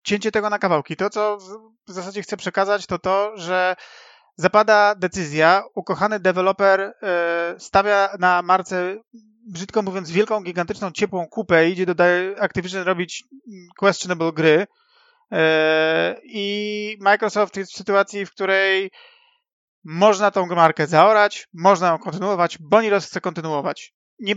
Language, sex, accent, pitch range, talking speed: Polish, male, native, 160-200 Hz, 125 wpm